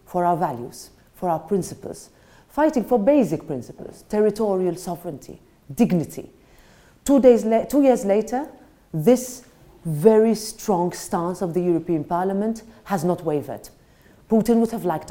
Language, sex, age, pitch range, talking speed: English, female, 40-59, 140-195 Hz, 135 wpm